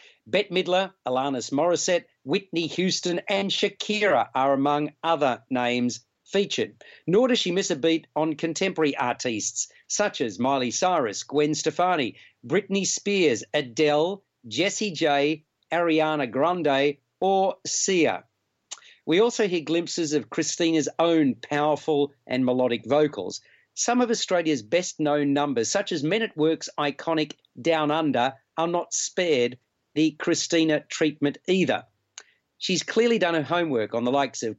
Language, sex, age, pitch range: English, male, 50-69, 145-175 Hz